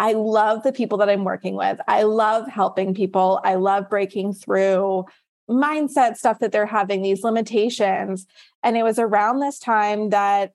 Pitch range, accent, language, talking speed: 190-215 Hz, American, English, 170 wpm